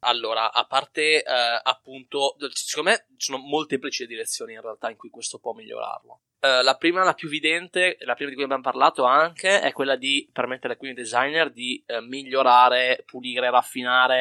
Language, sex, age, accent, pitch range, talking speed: Italian, male, 20-39, native, 120-155 Hz, 185 wpm